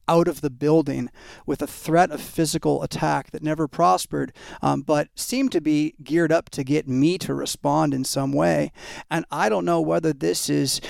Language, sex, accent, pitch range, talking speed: English, male, American, 140-165 Hz, 195 wpm